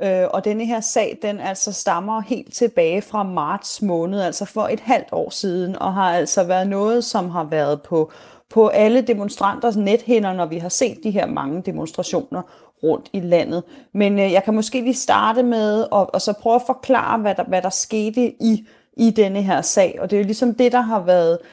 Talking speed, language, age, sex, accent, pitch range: 205 wpm, Danish, 30-49, female, native, 180-230 Hz